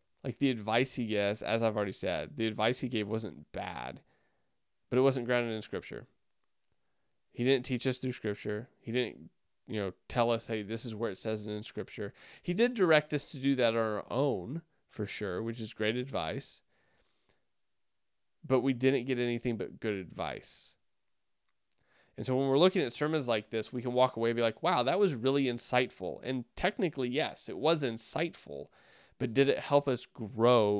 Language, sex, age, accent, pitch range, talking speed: English, male, 20-39, American, 110-130 Hz, 195 wpm